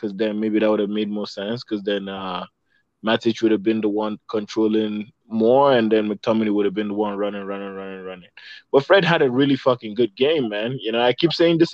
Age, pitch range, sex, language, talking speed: 20-39, 110-130 Hz, male, English, 240 wpm